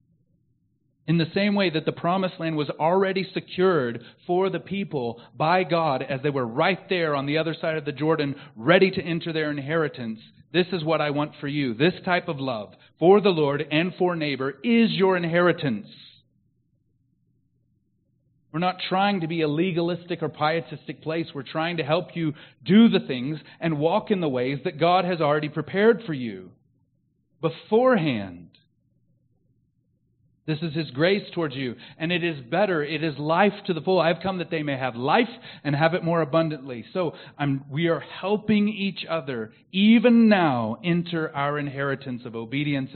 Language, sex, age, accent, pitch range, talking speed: English, male, 40-59, American, 135-175 Hz, 175 wpm